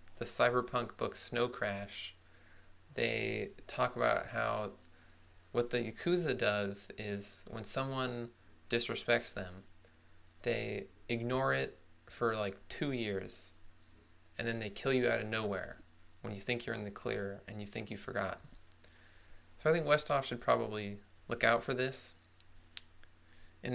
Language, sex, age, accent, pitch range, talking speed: English, male, 20-39, American, 90-120 Hz, 140 wpm